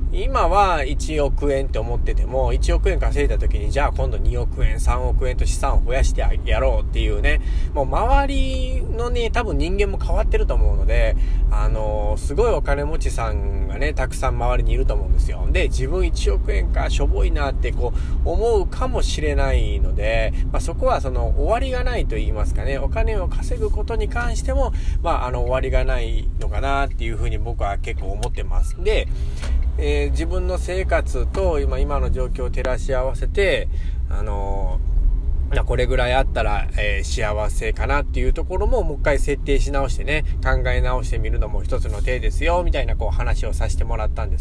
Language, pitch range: Japanese, 65-75 Hz